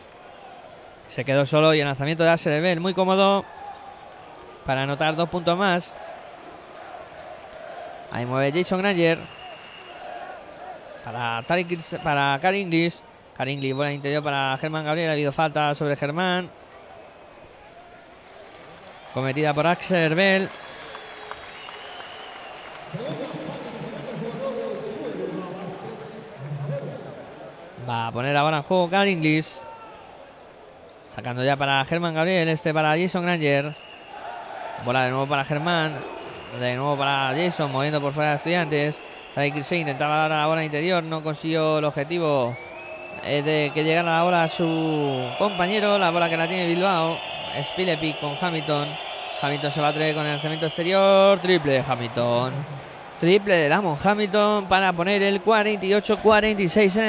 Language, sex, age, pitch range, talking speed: Spanish, male, 20-39, 145-185 Hz, 130 wpm